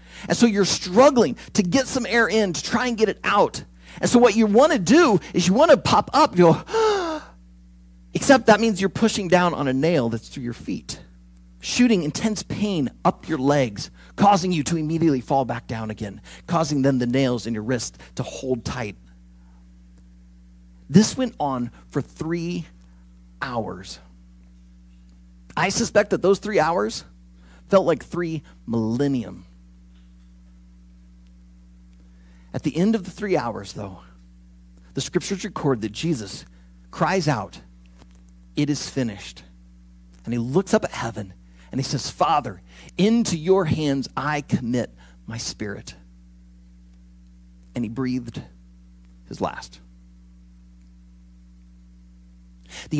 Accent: American